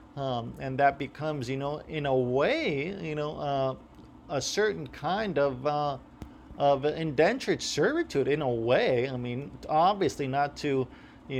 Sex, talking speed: male, 155 wpm